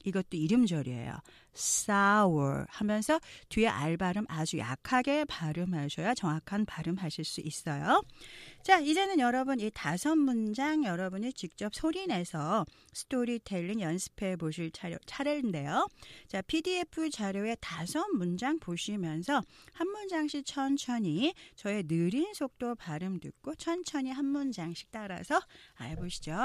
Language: Korean